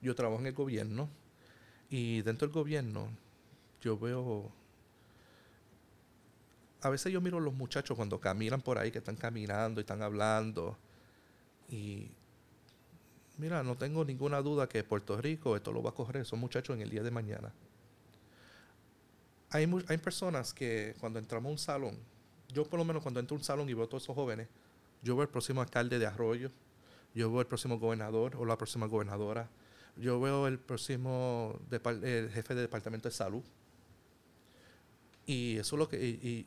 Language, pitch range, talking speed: English, 115-140 Hz, 175 wpm